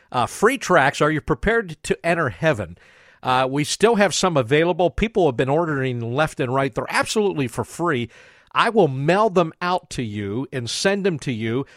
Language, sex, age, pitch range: English, male, 50-69, 130-175 Hz